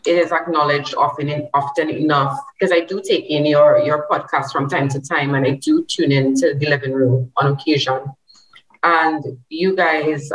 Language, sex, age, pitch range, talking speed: English, female, 30-49, 140-175 Hz, 180 wpm